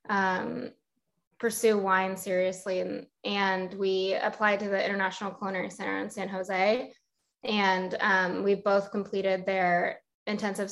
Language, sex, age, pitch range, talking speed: English, female, 20-39, 190-220 Hz, 130 wpm